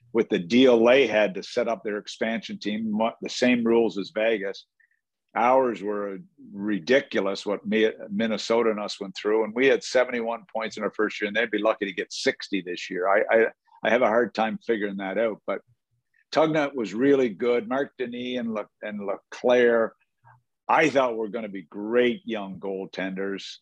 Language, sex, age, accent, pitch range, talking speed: English, male, 50-69, American, 105-120 Hz, 185 wpm